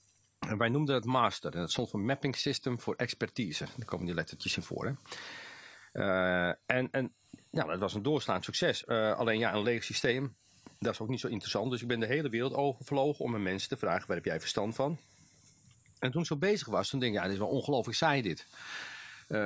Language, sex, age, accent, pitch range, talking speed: English, male, 40-59, Dutch, 110-140 Hz, 230 wpm